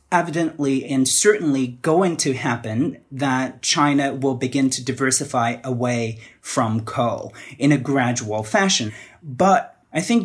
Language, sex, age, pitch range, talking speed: English, male, 30-49, 125-155 Hz, 130 wpm